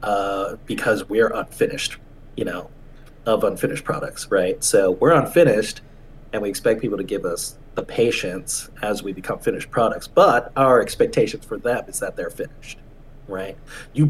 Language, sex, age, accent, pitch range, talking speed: English, male, 30-49, American, 130-165 Hz, 160 wpm